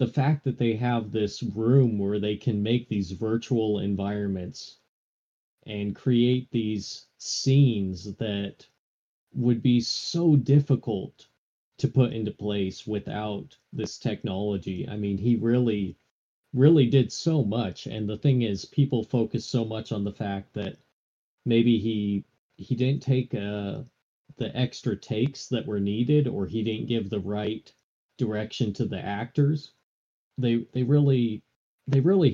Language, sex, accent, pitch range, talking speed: English, male, American, 105-130 Hz, 145 wpm